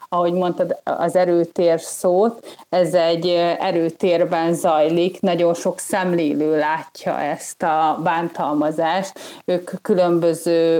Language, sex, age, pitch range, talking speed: Hungarian, female, 30-49, 170-190 Hz, 100 wpm